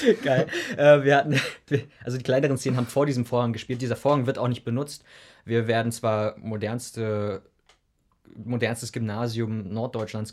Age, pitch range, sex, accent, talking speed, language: 20-39, 105-125 Hz, male, German, 150 wpm, German